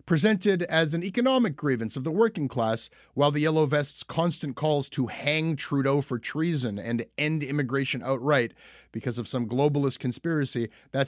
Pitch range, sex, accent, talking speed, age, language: 120-160 Hz, male, American, 160 wpm, 30-49, English